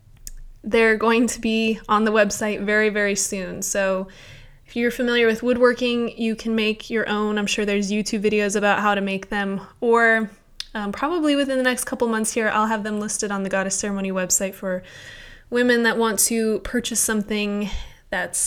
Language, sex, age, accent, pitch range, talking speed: English, female, 20-39, American, 200-230 Hz, 185 wpm